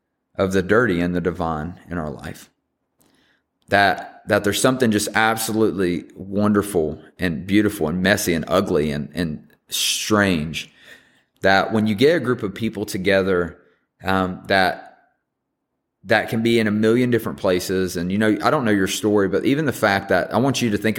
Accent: American